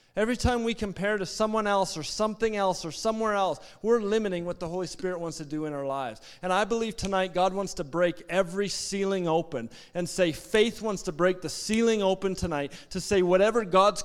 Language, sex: English, male